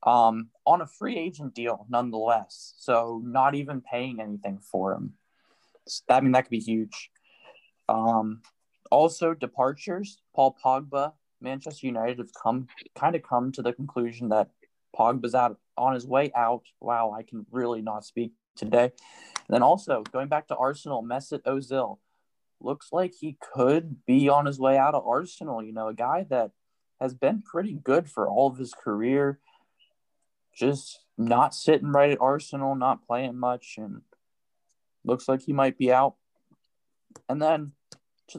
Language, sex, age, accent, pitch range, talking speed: English, male, 10-29, American, 120-145 Hz, 160 wpm